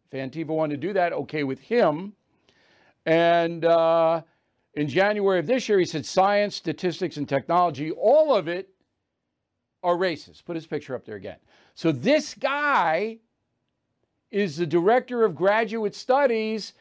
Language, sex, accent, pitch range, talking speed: English, male, American, 155-230 Hz, 145 wpm